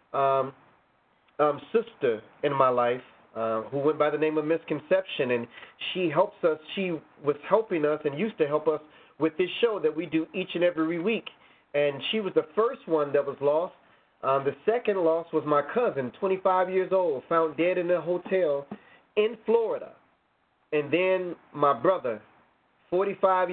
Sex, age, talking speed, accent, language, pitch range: male, 30-49, 175 wpm, American, English, 140-180 Hz